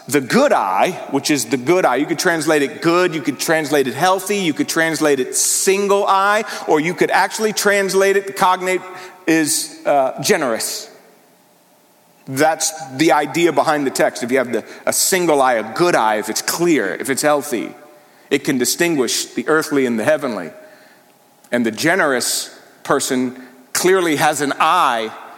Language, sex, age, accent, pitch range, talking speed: English, male, 40-59, American, 145-205 Hz, 170 wpm